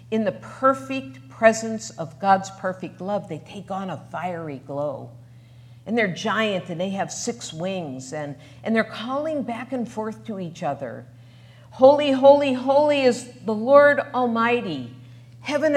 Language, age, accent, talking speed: English, 50-69, American, 150 wpm